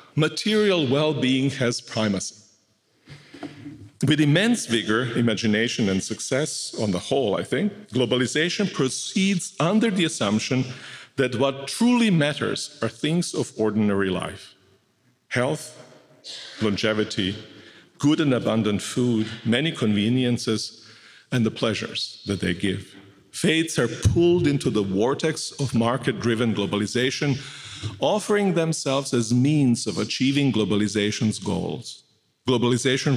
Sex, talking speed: male, 110 wpm